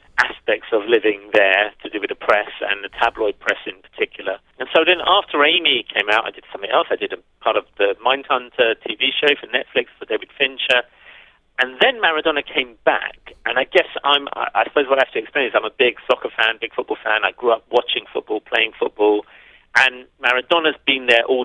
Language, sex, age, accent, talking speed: English, male, 40-59, British, 215 wpm